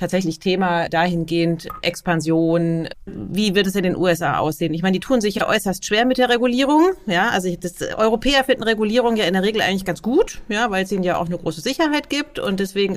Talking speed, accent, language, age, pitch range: 220 wpm, German, German, 40-59, 170-210 Hz